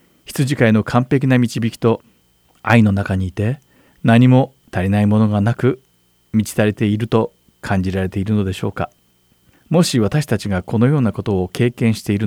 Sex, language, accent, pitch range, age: male, Japanese, native, 90-120 Hz, 40-59